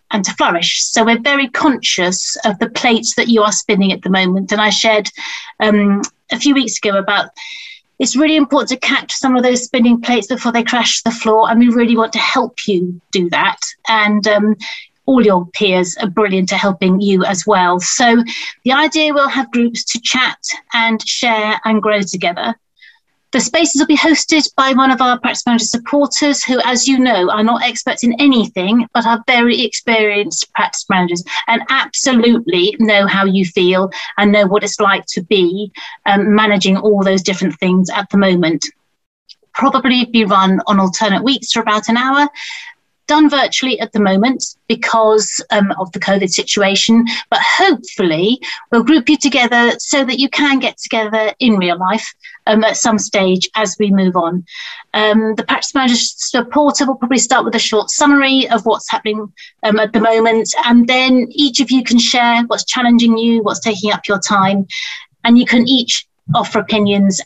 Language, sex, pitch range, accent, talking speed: English, female, 200-255 Hz, British, 185 wpm